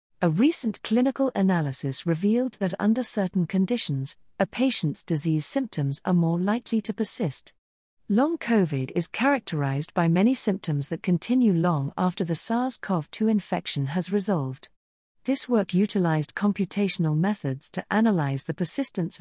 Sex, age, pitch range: female, 40-59, 155-210 Hz